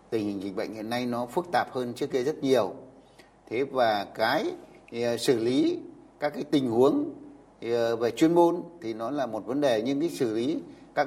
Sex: male